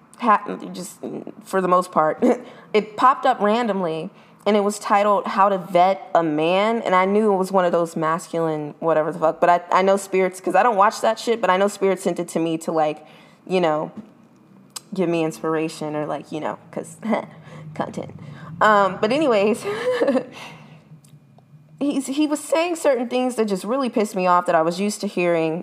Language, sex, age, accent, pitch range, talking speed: English, female, 20-39, American, 170-215 Hz, 195 wpm